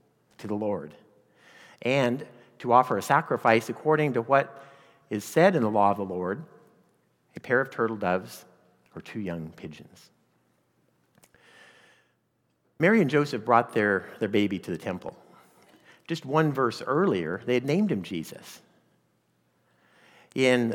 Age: 50-69